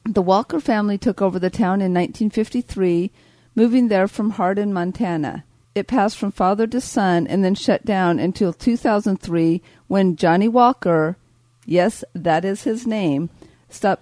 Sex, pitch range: female, 175-215 Hz